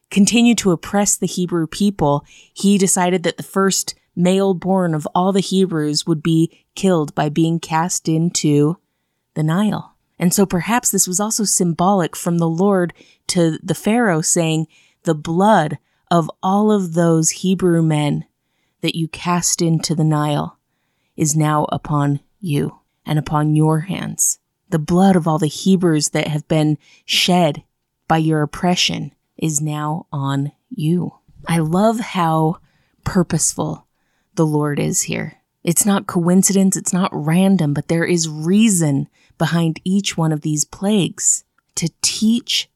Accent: American